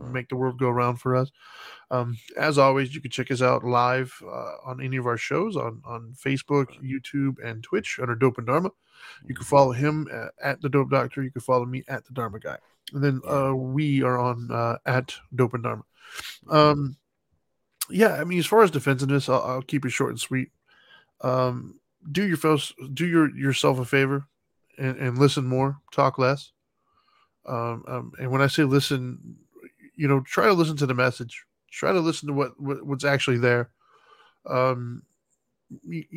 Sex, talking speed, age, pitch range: male, 190 wpm, 20-39, 125-145 Hz